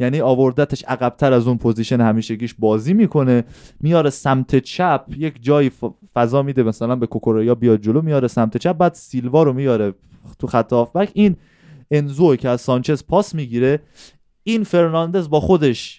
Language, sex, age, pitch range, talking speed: Persian, male, 20-39, 120-155 Hz, 160 wpm